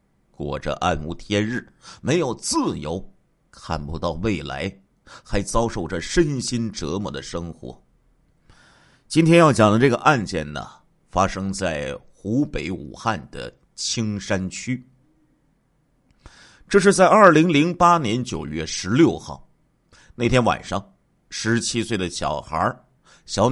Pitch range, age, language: 95-130 Hz, 50-69, Chinese